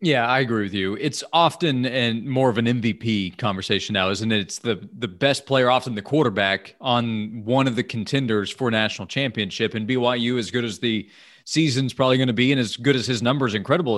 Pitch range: 115-140 Hz